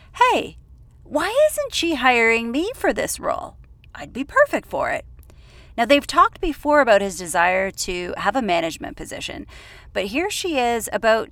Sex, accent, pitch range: female, American, 190-300 Hz